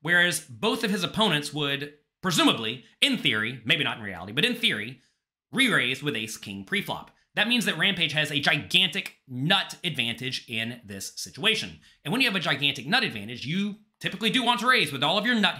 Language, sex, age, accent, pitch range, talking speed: English, male, 30-49, American, 140-215 Hz, 195 wpm